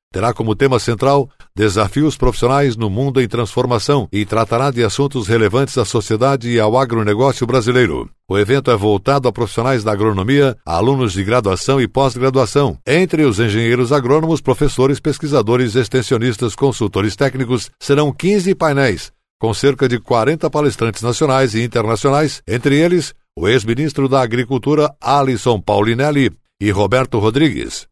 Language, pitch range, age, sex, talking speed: Portuguese, 115-140 Hz, 60-79, male, 140 wpm